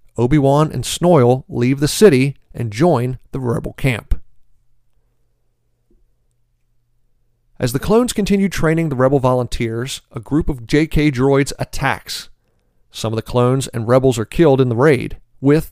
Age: 40-59